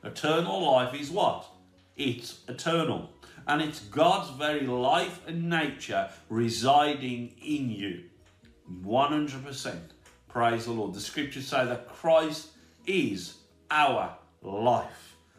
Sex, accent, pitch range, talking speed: male, British, 105-140 Hz, 110 wpm